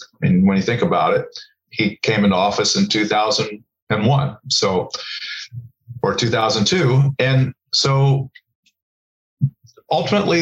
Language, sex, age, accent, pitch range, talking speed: English, male, 40-59, American, 105-135 Hz, 130 wpm